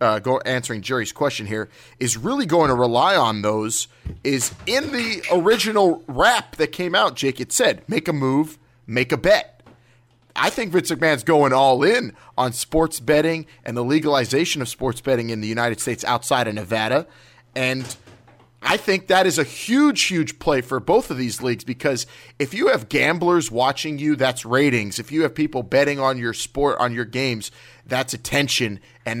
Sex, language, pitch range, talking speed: male, English, 115-150 Hz, 185 wpm